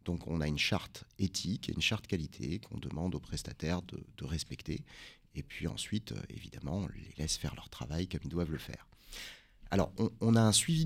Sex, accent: male, French